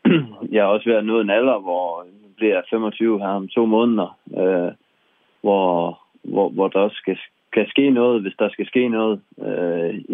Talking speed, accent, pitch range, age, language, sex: 170 wpm, native, 95-110 Hz, 20-39, Danish, male